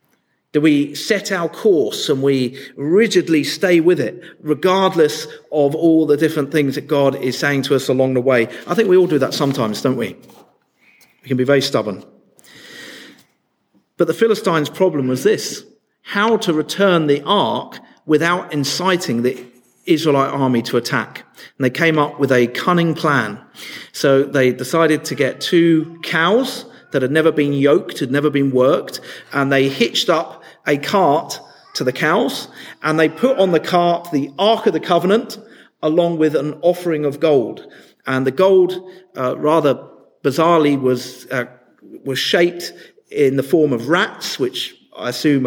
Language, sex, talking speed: English, male, 165 wpm